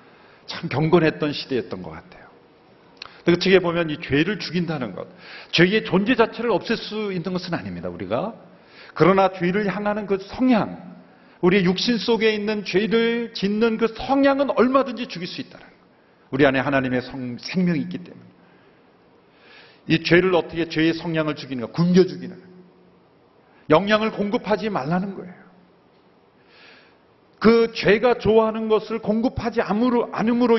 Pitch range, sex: 155-225 Hz, male